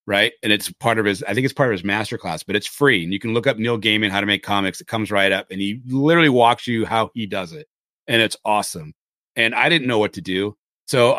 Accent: American